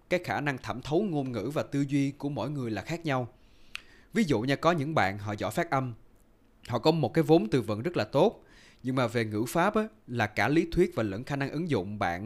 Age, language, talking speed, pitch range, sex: 20-39, Vietnamese, 260 wpm, 115-160 Hz, male